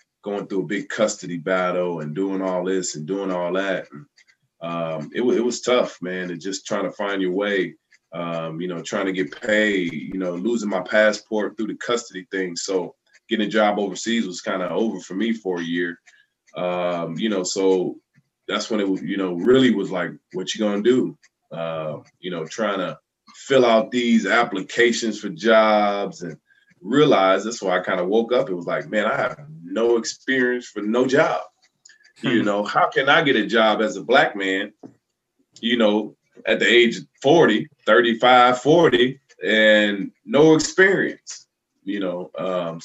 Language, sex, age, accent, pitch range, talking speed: English, male, 20-39, American, 90-110 Hz, 185 wpm